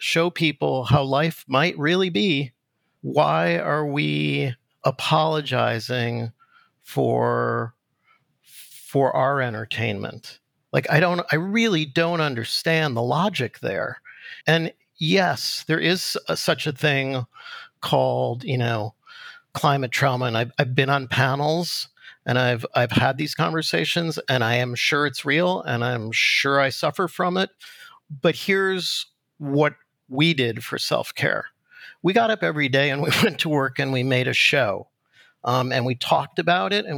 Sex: male